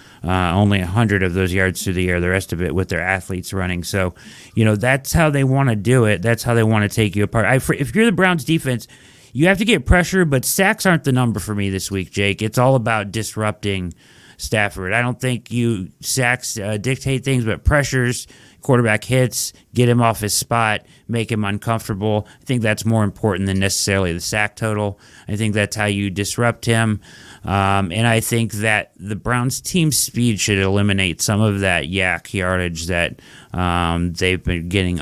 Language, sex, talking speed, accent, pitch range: English, male, 200 wpm, American, 95-120 Hz